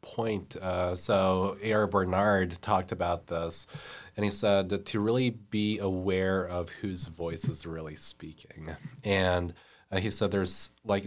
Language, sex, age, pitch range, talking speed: English, male, 20-39, 90-100 Hz, 150 wpm